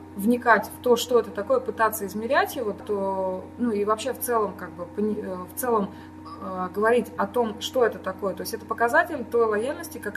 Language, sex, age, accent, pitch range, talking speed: Russian, female, 20-39, native, 195-245 Hz, 190 wpm